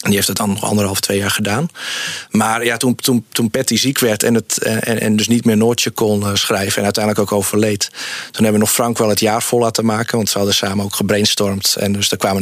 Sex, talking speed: male, 255 wpm